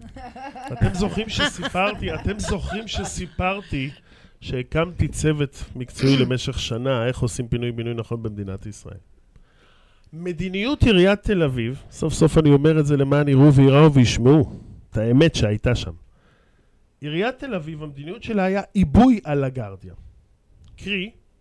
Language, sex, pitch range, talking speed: Hebrew, male, 125-190 Hz, 125 wpm